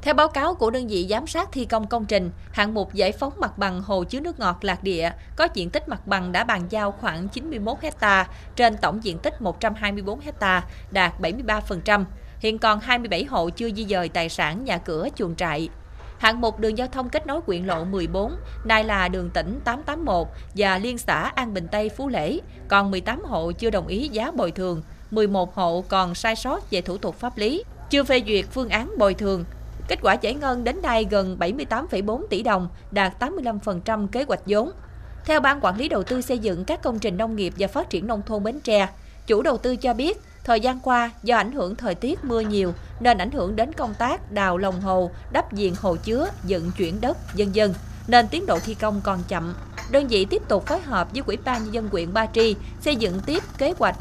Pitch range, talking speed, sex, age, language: 190-240 Hz, 220 wpm, female, 20-39, Vietnamese